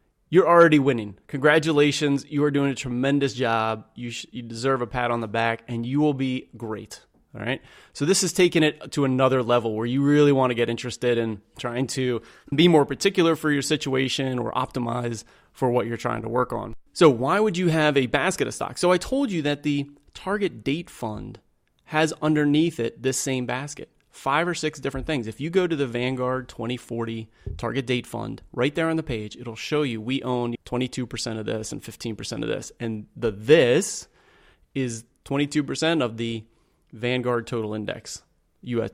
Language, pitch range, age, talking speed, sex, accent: English, 115-150 Hz, 30-49, 195 wpm, male, American